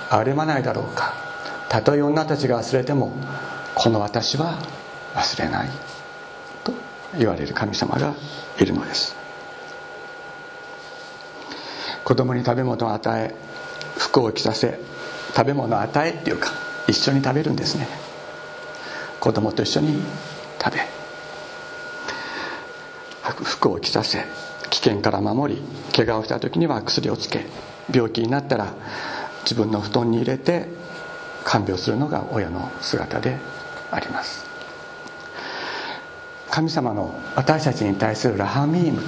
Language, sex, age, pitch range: Japanese, male, 50-69, 120-160 Hz